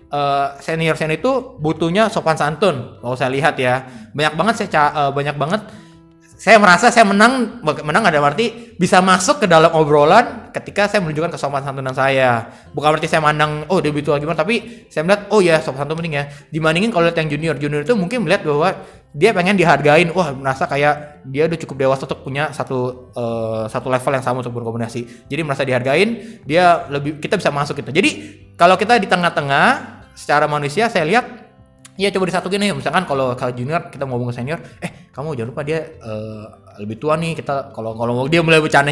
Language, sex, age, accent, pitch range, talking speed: Indonesian, male, 20-39, native, 135-185 Hz, 195 wpm